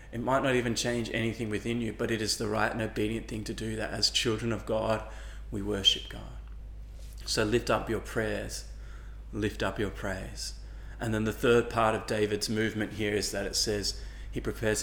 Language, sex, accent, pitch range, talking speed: English, male, Australian, 100-115 Hz, 200 wpm